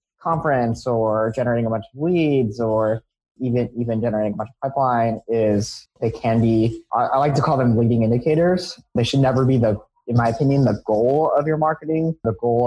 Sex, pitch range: male, 110-130 Hz